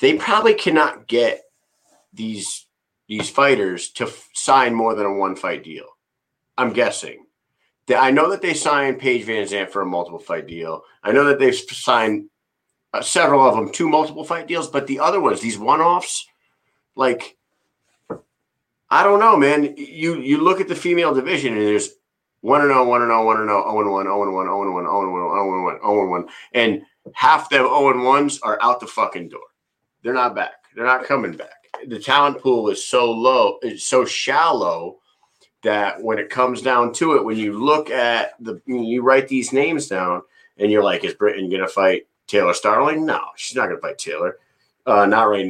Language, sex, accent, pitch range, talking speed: English, male, American, 105-175 Hz, 175 wpm